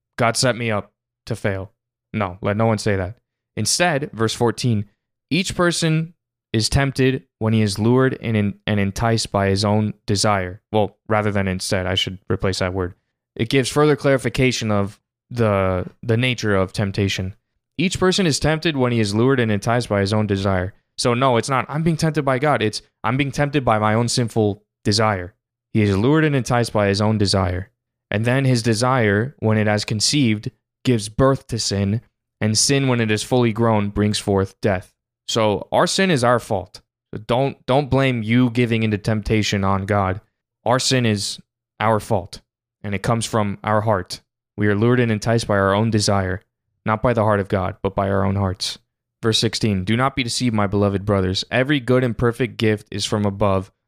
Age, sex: 20-39, male